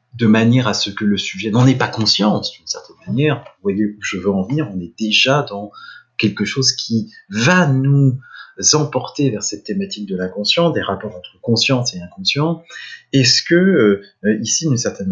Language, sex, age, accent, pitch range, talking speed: English, male, 30-49, French, 105-150 Hz, 190 wpm